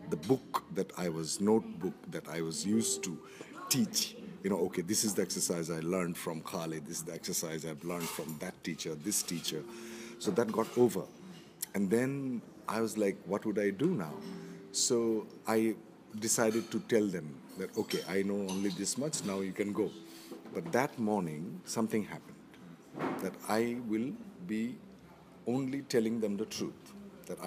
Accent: Indian